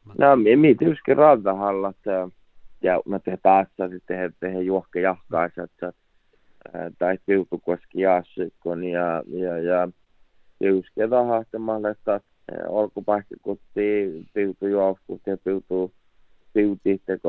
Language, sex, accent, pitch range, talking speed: Czech, male, Finnish, 90-100 Hz, 75 wpm